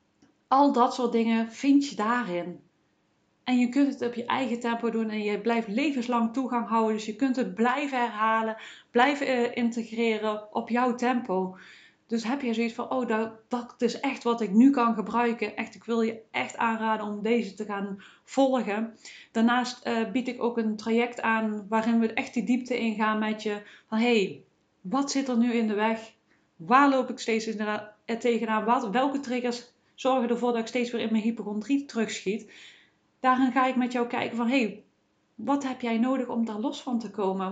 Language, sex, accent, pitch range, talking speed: Dutch, female, Dutch, 225-255 Hz, 195 wpm